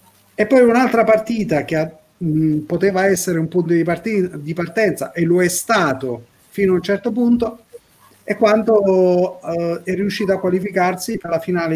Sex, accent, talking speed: male, native, 170 wpm